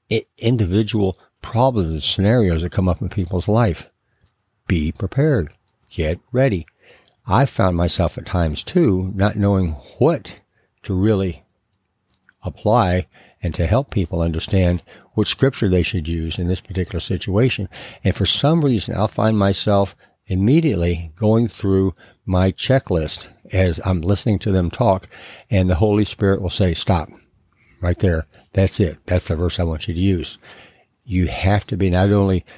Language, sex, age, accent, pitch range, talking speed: English, male, 60-79, American, 90-110 Hz, 155 wpm